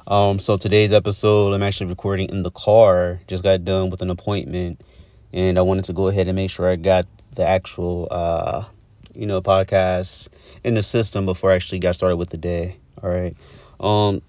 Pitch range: 90-105 Hz